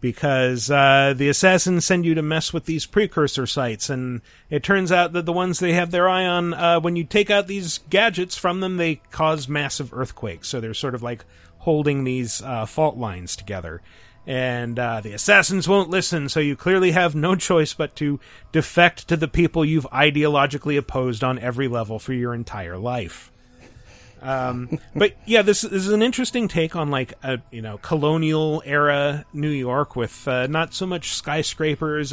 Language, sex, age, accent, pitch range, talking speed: English, male, 40-59, American, 120-165 Hz, 185 wpm